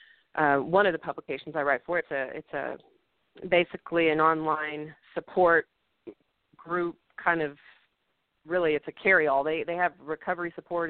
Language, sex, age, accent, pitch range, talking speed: English, female, 30-49, American, 150-175 Hz, 150 wpm